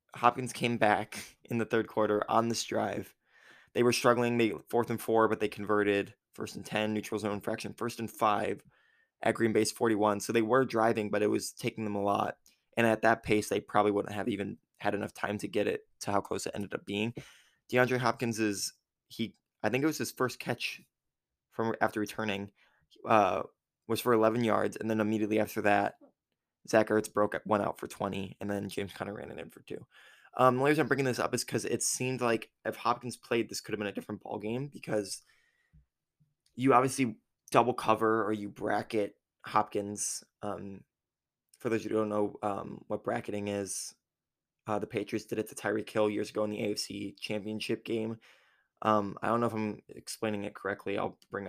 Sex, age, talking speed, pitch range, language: male, 20-39, 205 wpm, 105-120 Hz, English